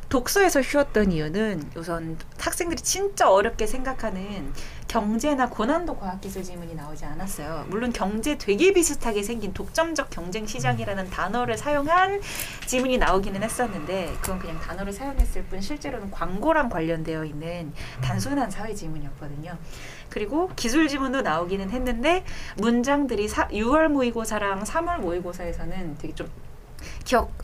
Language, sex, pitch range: Korean, female, 170-265 Hz